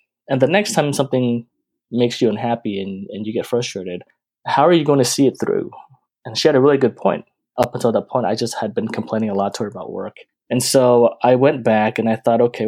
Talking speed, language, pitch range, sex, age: 245 wpm, English, 115-135 Hz, male, 20-39